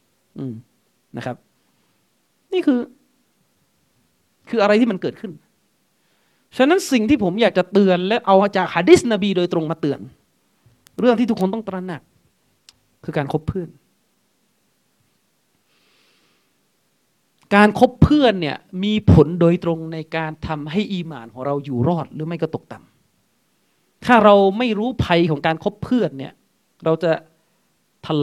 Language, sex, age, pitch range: Thai, male, 30-49, 160-215 Hz